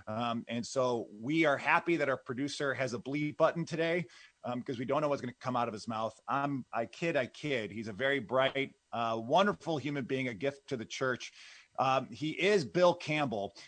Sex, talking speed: male, 220 wpm